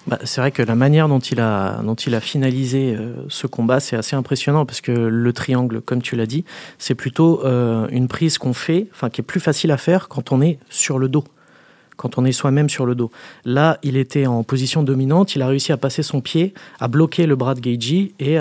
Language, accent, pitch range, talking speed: French, French, 125-155 Hz, 240 wpm